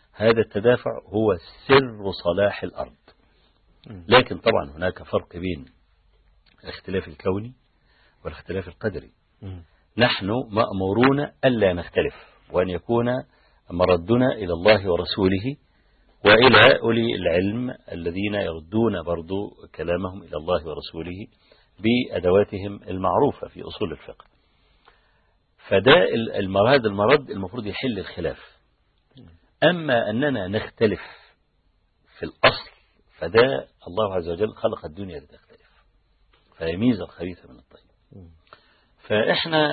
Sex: male